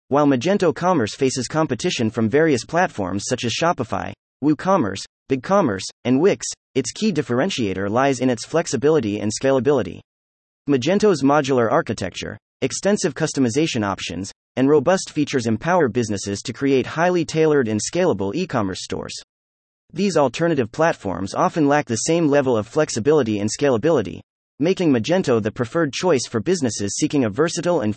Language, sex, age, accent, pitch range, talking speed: English, male, 30-49, American, 105-155 Hz, 140 wpm